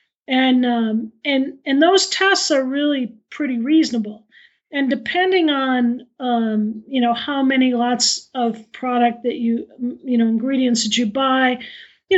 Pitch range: 230-265 Hz